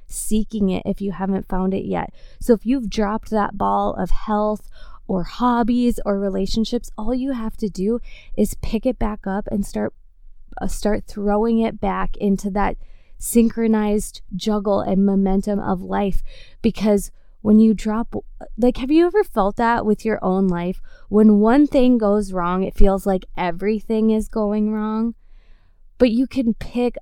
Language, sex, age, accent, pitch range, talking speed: English, female, 20-39, American, 195-225 Hz, 165 wpm